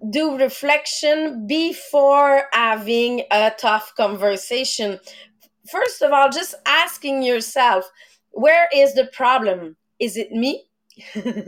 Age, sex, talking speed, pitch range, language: 30-49, female, 105 wpm, 230-295 Hz, English